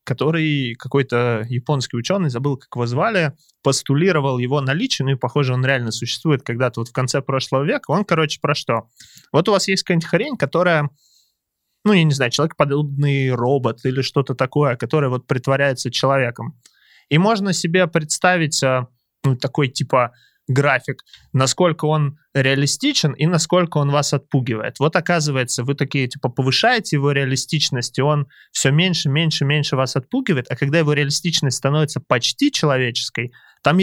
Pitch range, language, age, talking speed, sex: 130-155 Hz, Russian, 20-39, 155 wpm, male